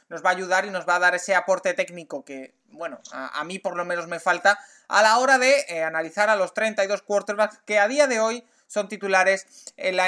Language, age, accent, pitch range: Spanish, 20-39, Spanish, 195-250 Hz